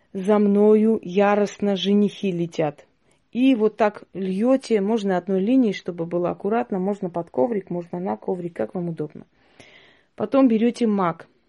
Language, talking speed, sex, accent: Russian, 140 wpm, female, native